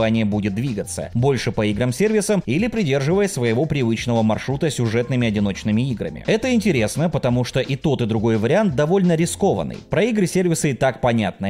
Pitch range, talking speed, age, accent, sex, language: 110-160 Hz, 150 wpm, 20-39, native, male, Russian